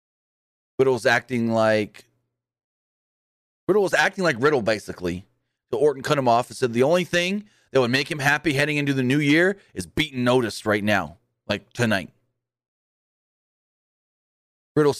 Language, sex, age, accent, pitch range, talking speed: English, male, 30-49, American, 115-170 Hz, 140 wpm